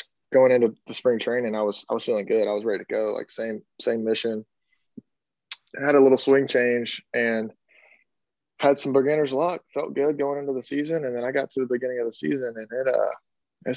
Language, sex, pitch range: English, male, 110-145 Hz